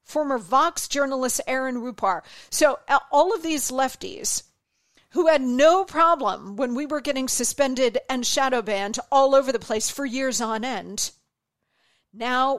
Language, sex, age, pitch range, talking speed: English, female, 50-69, 215-270 Hz, 150 wpm